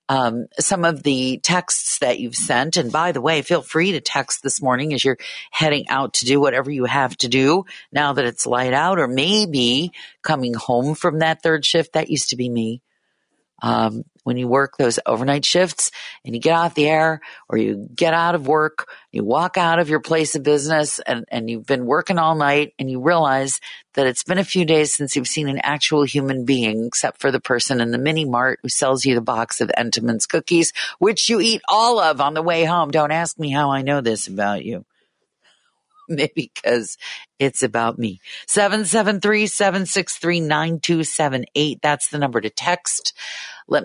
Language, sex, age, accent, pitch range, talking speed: English, female, 50-69, American, 130-165 Hz, 195 wpm